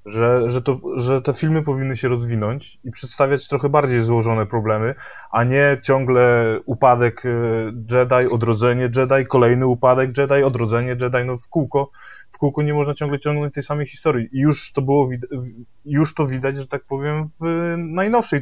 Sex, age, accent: male, 20-39, native